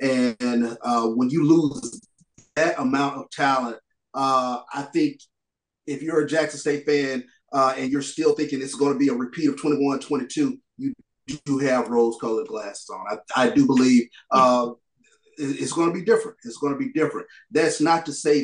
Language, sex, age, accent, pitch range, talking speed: English, male, 30-49, American, 130-165 Hz, 190 wpm